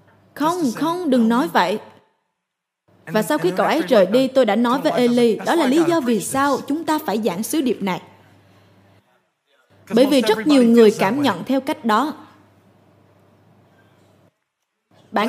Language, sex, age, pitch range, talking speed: Vietnamese, female, 20-39, 205-280 Hz, 160 wpm